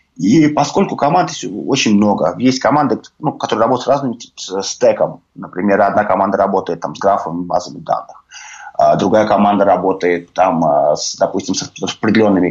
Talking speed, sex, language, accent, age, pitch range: 150 wpm, male, Russian, native, 20-39, 100-145 Hz